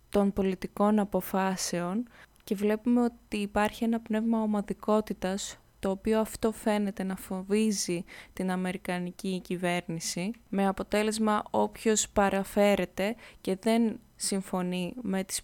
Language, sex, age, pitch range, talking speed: Greek, female, 20-39, 185-220 Hz, 110 wpm